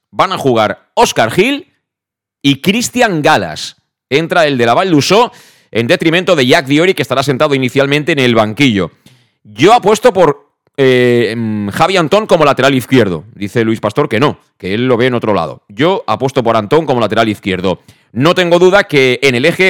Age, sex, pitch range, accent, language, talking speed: 30-49, male, 115-165 Hz, Spanish, Spanish, 185 wpm